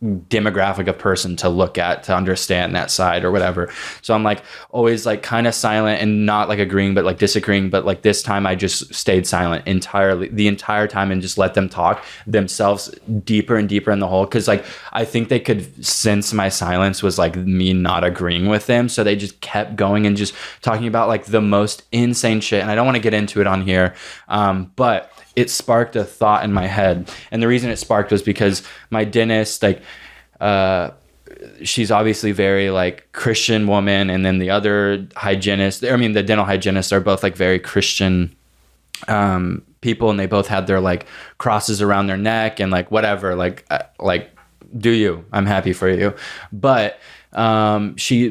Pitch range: 95-110 Hz